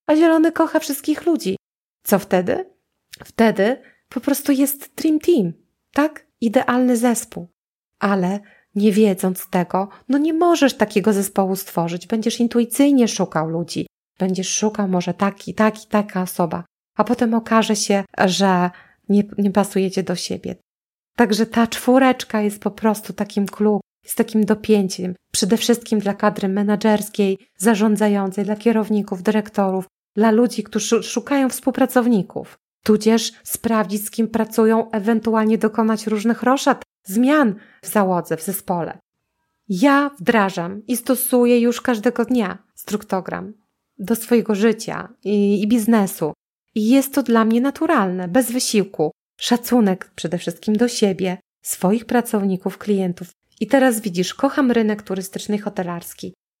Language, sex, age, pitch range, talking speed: Polish, female, 30-49, 195-240 Hz, 130 wpm